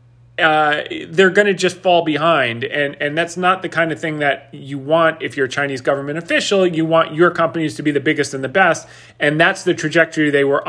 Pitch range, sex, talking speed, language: 140-175 Hz, male, 230 wpm, English